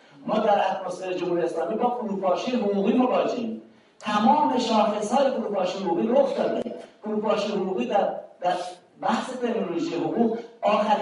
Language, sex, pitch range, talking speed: Persian, male, 180-250 Hz, 115 wpm